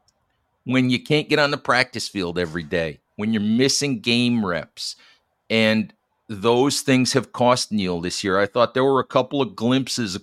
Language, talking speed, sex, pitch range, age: English, 190 wpm, male, 105-130 Hz, 50-69